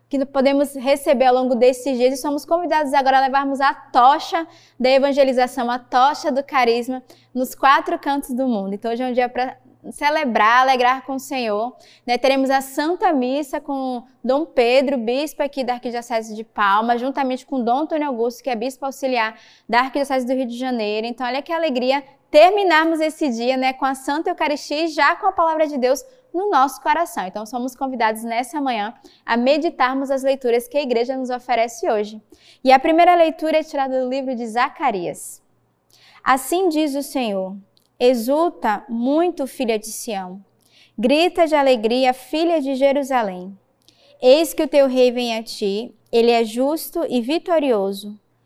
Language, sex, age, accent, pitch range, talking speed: Portuguese, female, 20-39, Brazilian, 245-295 Hz, 175 wpm